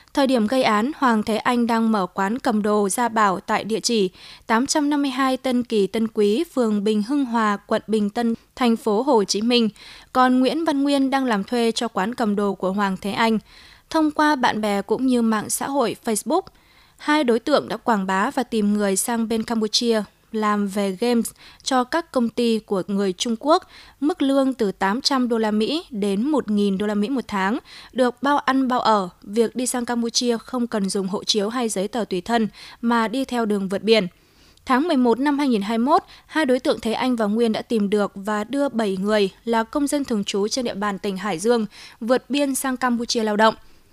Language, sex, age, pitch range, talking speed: Vietnamese, female, 20-39, 210-255 Hz, 215 wpm